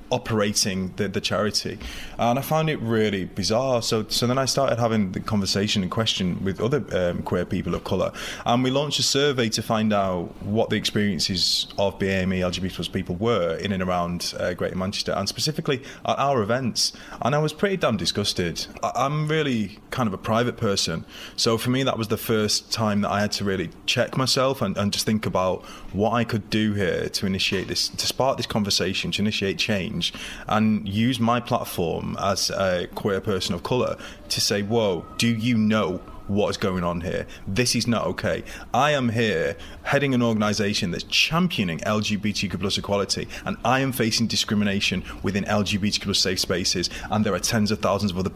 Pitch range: 95-120 Hz